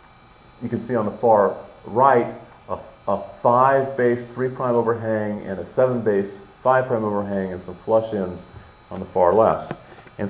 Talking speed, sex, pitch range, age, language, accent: 175 wpm, male, 90-115 Hz, 40-59, English, American